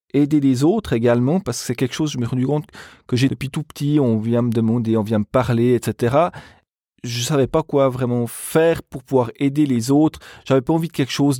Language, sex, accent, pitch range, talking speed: French, male, French, 115-145 Hz, 245 wpm